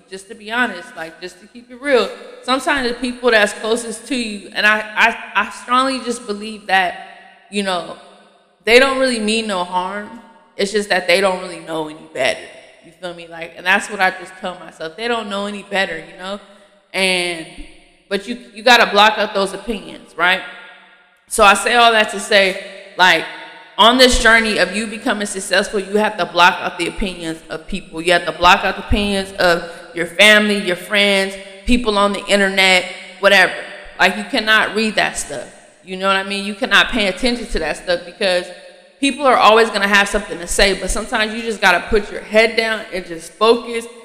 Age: 20-39